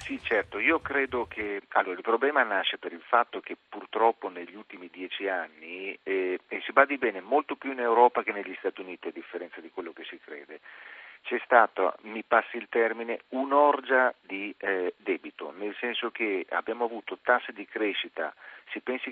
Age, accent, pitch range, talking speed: 40-59, native, 95-130 Hz, 185 wpm